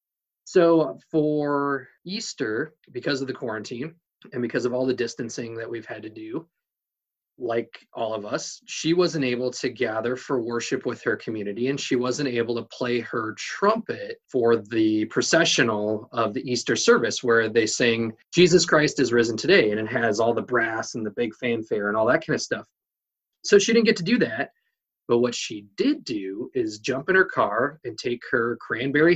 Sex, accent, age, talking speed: male, American, 30-49, 190 wpm